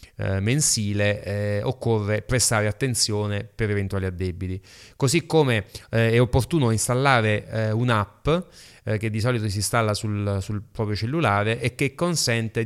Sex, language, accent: male, Italian, native